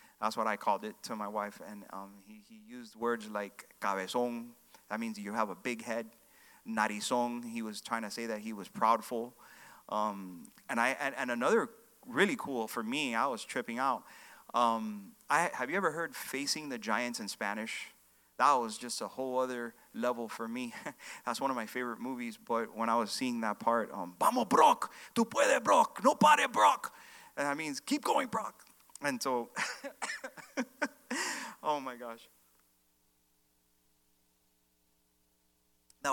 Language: Spanish